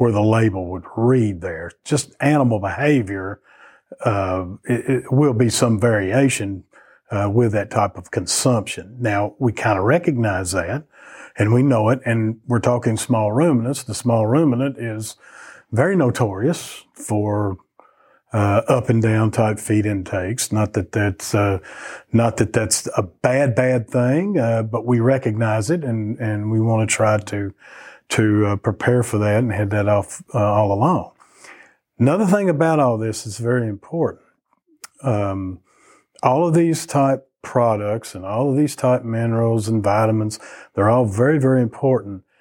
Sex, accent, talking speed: male, American, 160 wpm